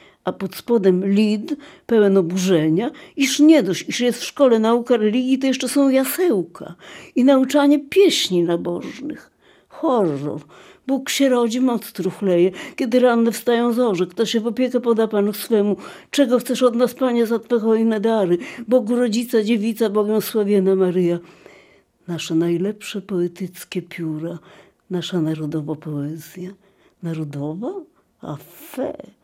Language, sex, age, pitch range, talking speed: Polish, female, 60-79, 175-245 Hz, 135 wpm